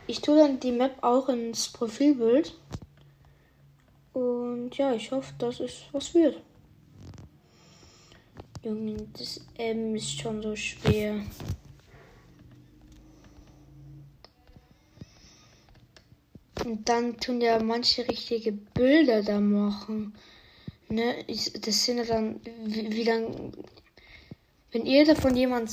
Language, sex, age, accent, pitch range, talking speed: German, female, 20-39, German, 215-255 Hz, 100 wpm